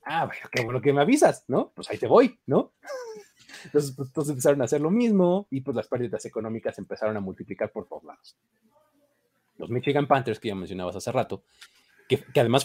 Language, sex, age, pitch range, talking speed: Spanish, male, 30-49, 110-170 Hz, 205 wpm